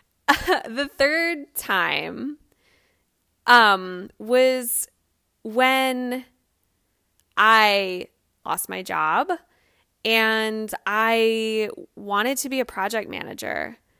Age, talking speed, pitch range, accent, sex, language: 20-39, 80 wpm, 185-225 Hz, American, female, English